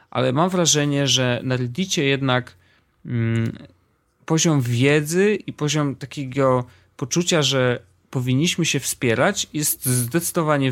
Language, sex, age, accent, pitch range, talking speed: Polish, male, 30-49, native, 110-145 Hz, 100 wpm